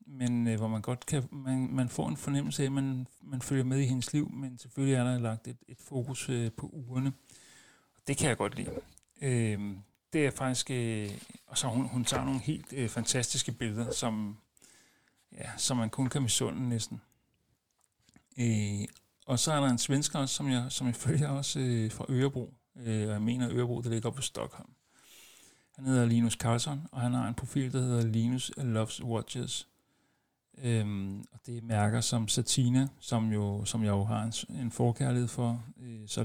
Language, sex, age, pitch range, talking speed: Danish, male, 60-79, 115-135 Hz, 190 wpm